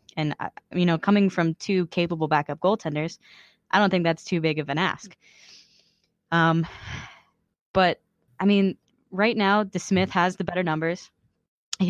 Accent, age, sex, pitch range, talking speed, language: American, 10-29, female, 160-195 Hz, 150 wpm, English